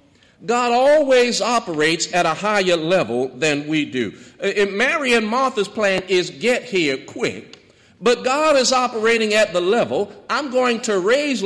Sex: male